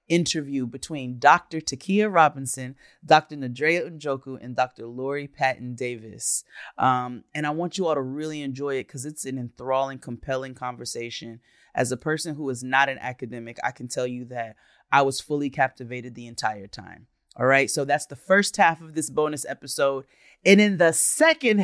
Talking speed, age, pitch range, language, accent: 175 wpm, 30-49, 125-150 Hz, English, American